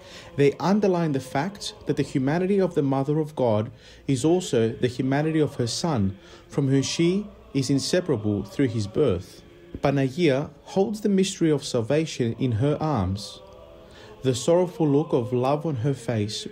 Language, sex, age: English, male, 30-49